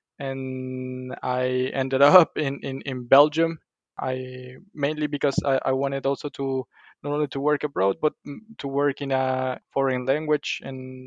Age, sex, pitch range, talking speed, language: 20-39, male, 130-145 Hz, 155 wpm, English